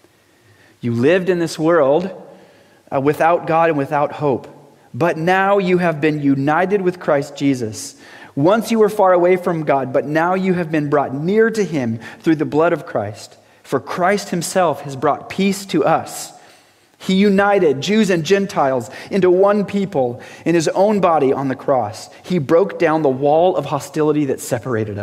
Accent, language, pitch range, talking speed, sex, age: American, English, 130-180 Hz, 175 wpm, male, 30-49